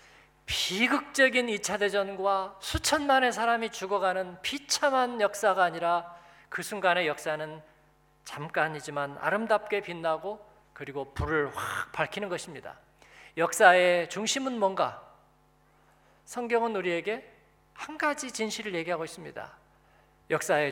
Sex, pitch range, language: male, 160-225 Hz, Korean